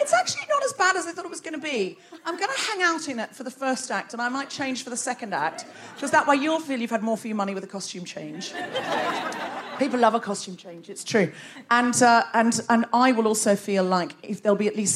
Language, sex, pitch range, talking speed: English, female, 200-260 Hz, 275 wpm